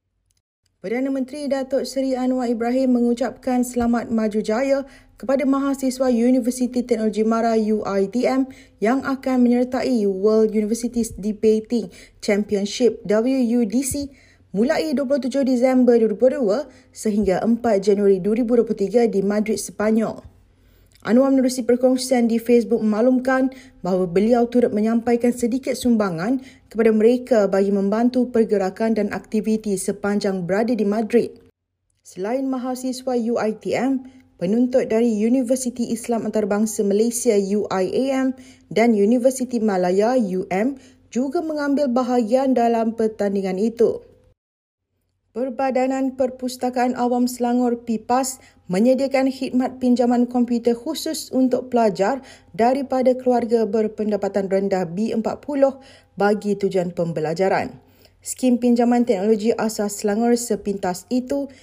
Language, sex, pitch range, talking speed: Malay, female, 210-255 Hz, 100 wpm